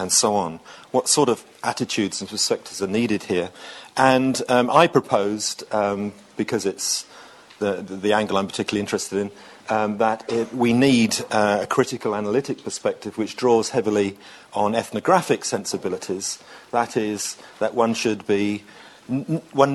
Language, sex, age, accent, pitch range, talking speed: English, male, 40-59, British, 100-115 Hz, 150 wpm